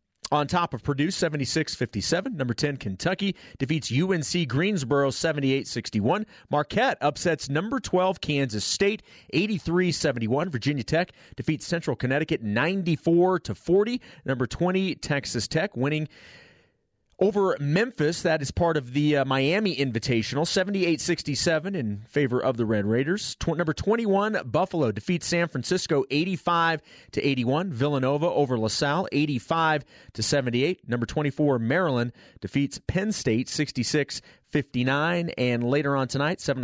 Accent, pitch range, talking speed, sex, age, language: American, 130-170 Hz, 130 wpm, male, 30-49, English